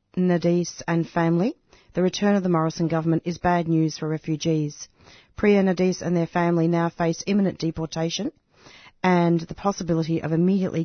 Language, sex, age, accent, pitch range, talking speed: English, female, 40-59, Australian, 160-185 Hz, 155 wpm